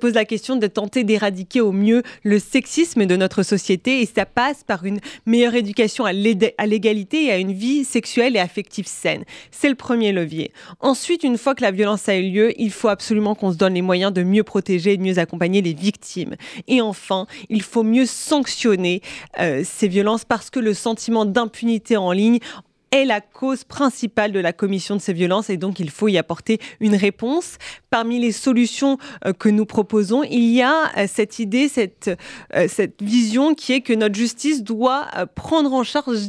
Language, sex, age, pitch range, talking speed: French, female, 20-39, 205-255 Hz, 195 wpm